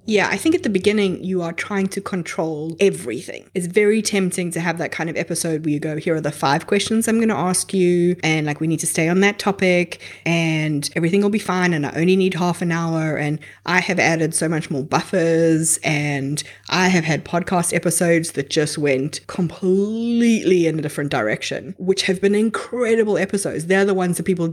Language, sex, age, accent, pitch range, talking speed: English, female, 20-39, Australian, 165-200 Hz, 215 wpm